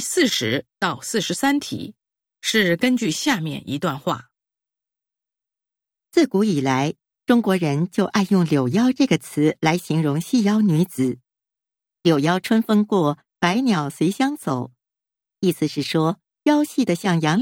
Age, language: 50-69, Japanese